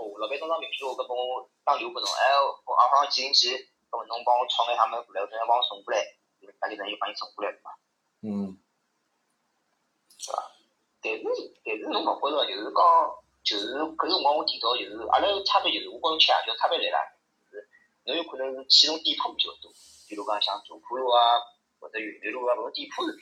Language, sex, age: Chinese, male, 30-49